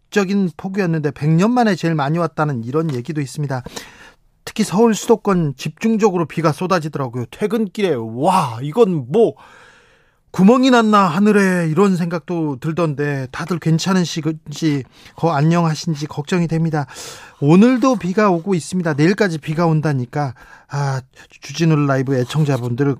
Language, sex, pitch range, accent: Korean, male, 145-180 Hz, native